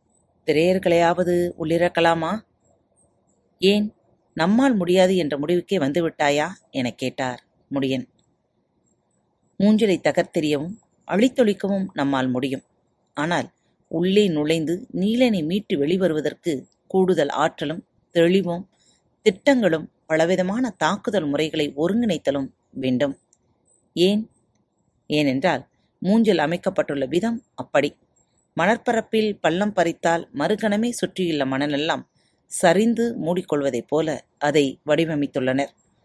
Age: 30-49